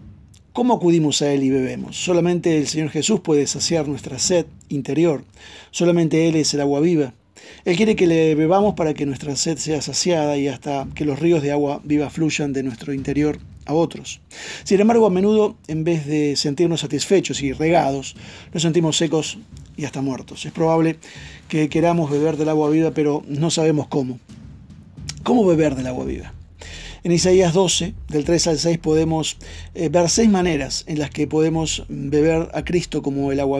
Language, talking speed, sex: Spanish, 180 wpm, male